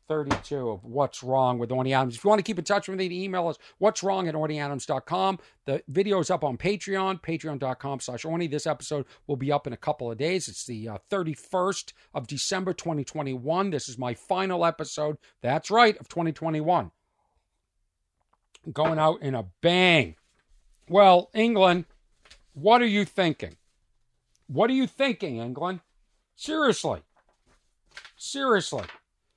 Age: 50-69